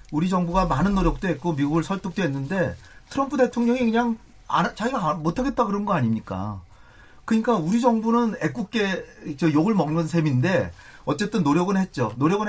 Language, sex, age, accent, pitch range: Korean, male, 40-59, native, 130-200 Hz